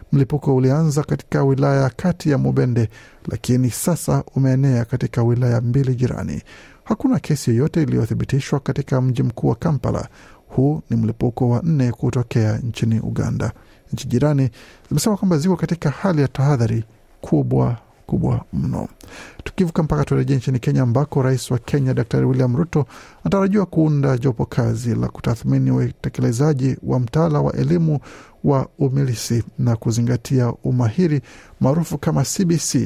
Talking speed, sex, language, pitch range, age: 135 wpm, male, Swahili, 120-150 Hz, 50-69